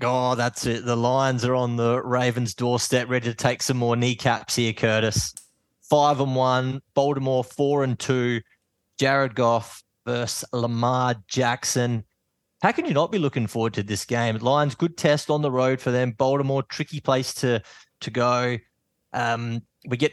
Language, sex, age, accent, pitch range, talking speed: English, male, 20-39, Australian, 115-140 Hz, 170 wpm